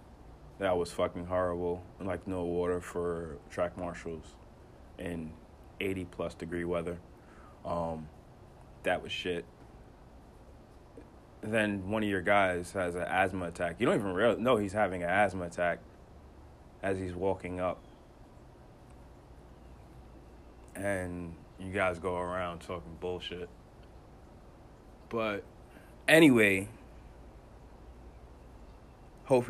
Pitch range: 80-95 Hz